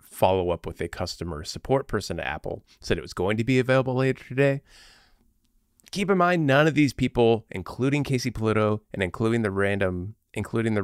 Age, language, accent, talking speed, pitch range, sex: 30-49, English, American, 190 wpm, 95-125 Hz, male